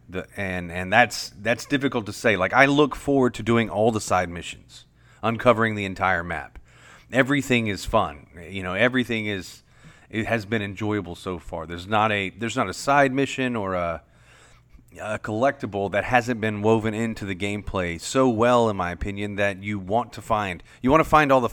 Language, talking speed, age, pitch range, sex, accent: English, 195 wpm, 30-49, 100-120 Hz, male, American